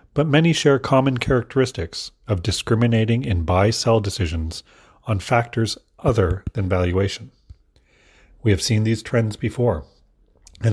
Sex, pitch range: male, 90-115 Hz